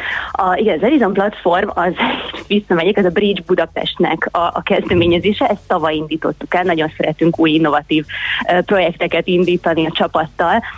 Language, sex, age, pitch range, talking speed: Hungarian, female, 30-49, 160-185 Hz, 145 wpm